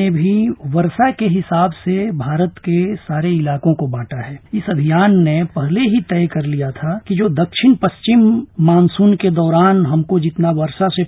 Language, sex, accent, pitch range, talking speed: Hindi, male, native, 155-195 Hz, 175 wpm